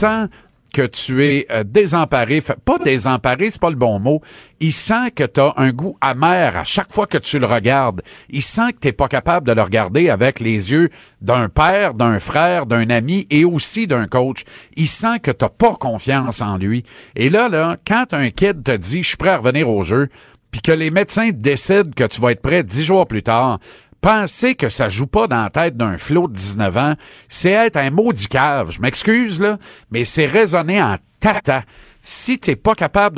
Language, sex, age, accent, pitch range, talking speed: French, male, 50-69, Canadian, 120-190 Hz, 215 wpm